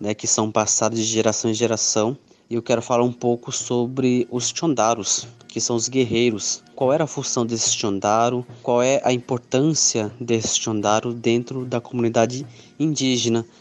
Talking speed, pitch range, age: 165 wpm, 110-130 Hz, 20-39